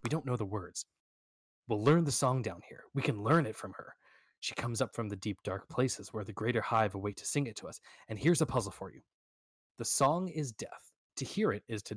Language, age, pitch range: English, 20-39, 105-140 Hz